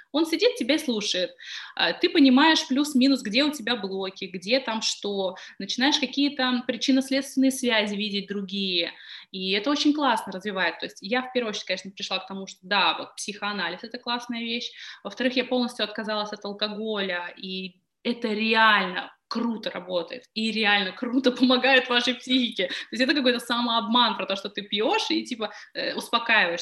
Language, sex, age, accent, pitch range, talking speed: Russian, female, 20-39, native, 200-255 Hz, 160 wpm